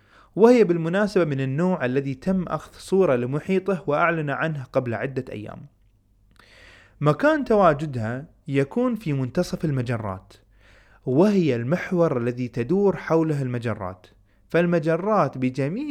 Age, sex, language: 20-39, male, Arabic